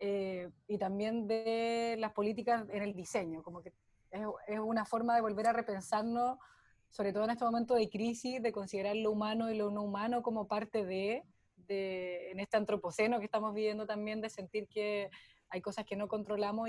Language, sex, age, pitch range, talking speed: Spanish, female, 20-39, 200-230 Hz, 190 wpm